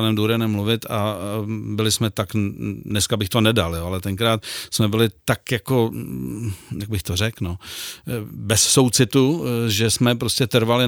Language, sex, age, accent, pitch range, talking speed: Czech, male, 50-69, native, 110-120 Hz, 155 wpm